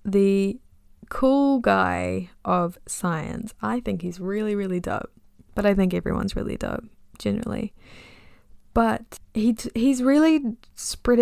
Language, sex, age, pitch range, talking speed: English, female, 10-29, 160-220 Hz, 130 wpm